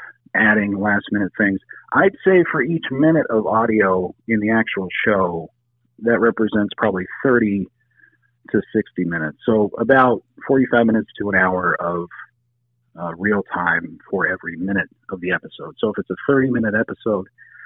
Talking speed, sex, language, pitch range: 150 wpm, male, English, 105-135 Hz